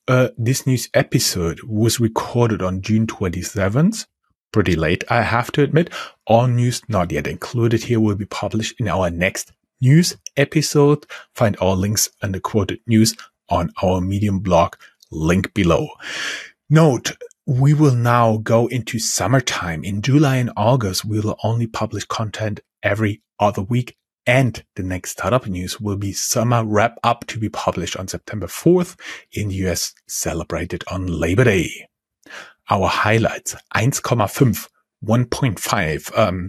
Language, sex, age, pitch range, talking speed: English, male, 30-49, 100-125 Hz, 145 wpm